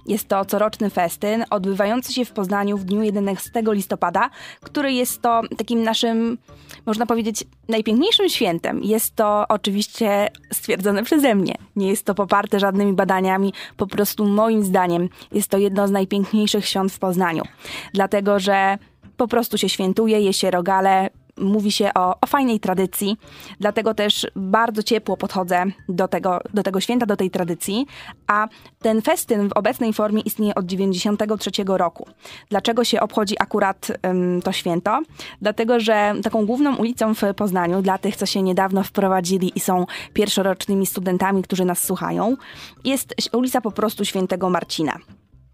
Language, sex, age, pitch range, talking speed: Polish, female, 20-39, 195-225 Hz, 150 wpm